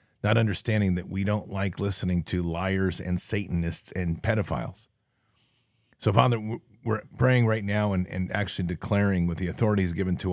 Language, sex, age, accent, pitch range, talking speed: English, male, 50-69, American, 90-115 Hz, 165 wpm